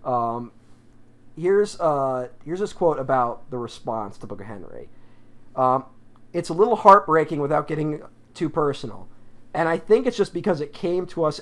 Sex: male